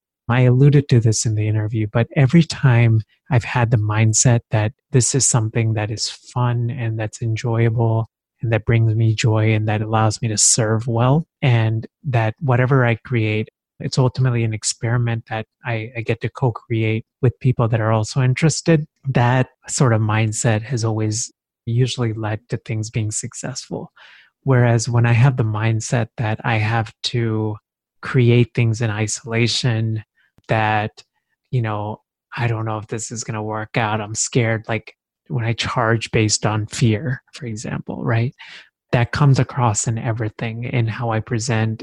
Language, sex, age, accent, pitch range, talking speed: English, male, 30-49, American, 110-125 Hz, 170 wpm